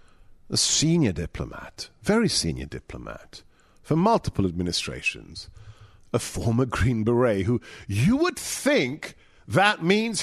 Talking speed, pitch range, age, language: 110 wpm, 95-125 Hz, 50-69, English